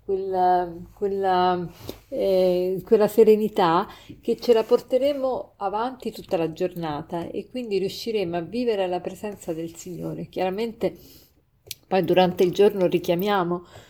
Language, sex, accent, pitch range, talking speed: Italian, female, native, 175-210 Hz, 120 wpm